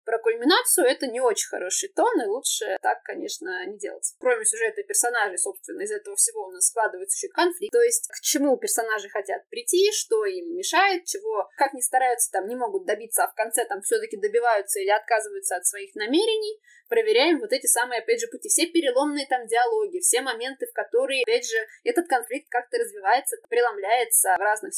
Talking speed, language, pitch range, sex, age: 190 wpm, Russian, 280-435 Hz, female, 20-39